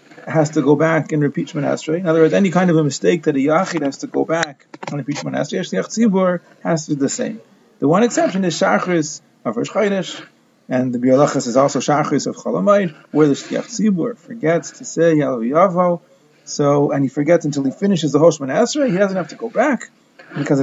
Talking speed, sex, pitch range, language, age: 210 wpm, male, 150-180 Hz, English, 30-49